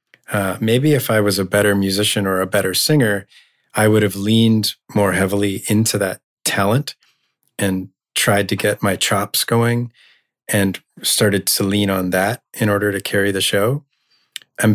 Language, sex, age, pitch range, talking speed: English, male, 30-49, 95-115 Hz, 165 wpm